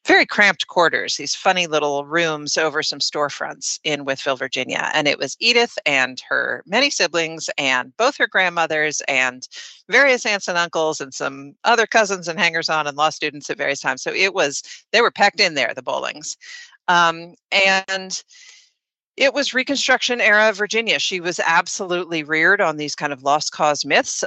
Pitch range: 155-225 Hz